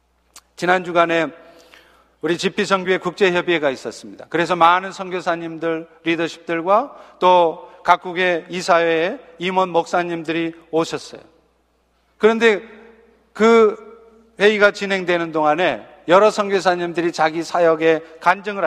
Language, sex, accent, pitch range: Korean, male, native, 165-210 Hz